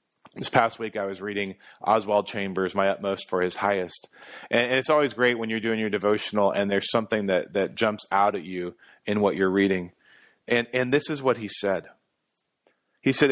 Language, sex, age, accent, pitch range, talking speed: English, male, 40-59, American, 100-125 Hz, 205 wpm